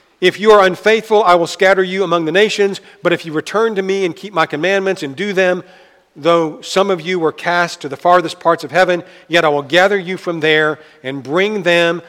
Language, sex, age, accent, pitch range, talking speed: English, male, 50-69, American, 145-185 Hz, 230 wpm